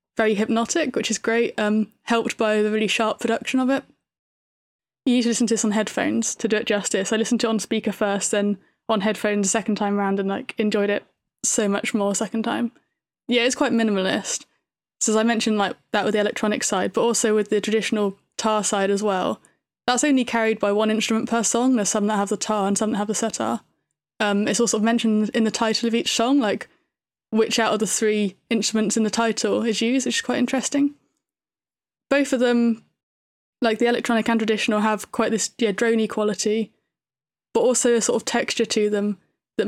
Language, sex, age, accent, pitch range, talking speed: English, female, 20-39, British, 210-235 Hz, 215 wpm